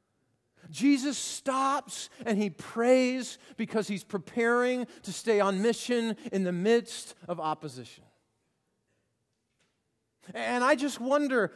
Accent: American